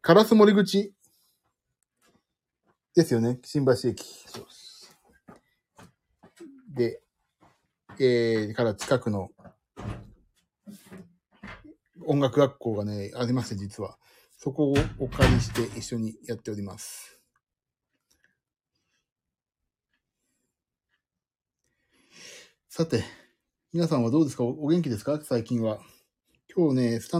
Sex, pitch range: male, 105-145 Hz